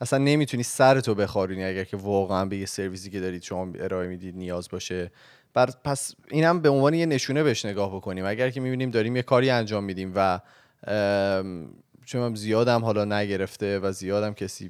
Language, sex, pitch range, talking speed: Persian, male, 100-125 Hz, 180 wpm